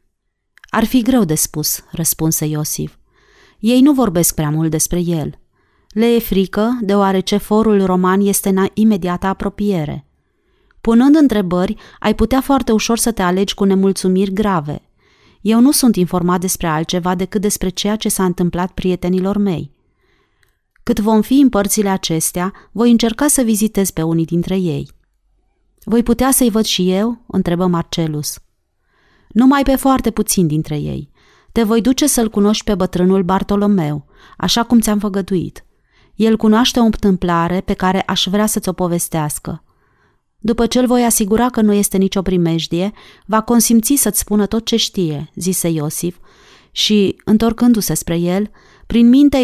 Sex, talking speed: female, 155 wpm